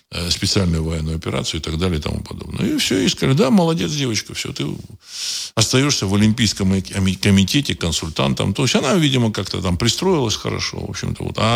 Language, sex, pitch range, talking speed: Russian, male, 90-125 Hz, 175 wpm